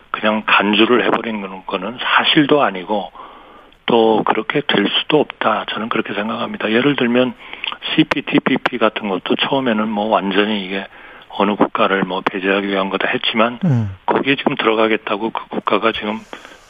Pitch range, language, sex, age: 105-125 Hz, Korean, male, 40-59